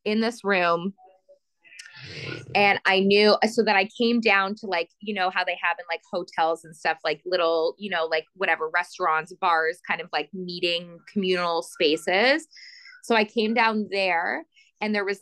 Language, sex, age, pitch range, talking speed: English, female, 20-39, 180-210 Hz, 180 wpm